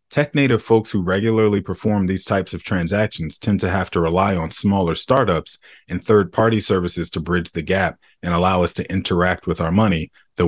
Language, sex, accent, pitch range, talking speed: English, male, American, 90-110 Hz, 200 wpm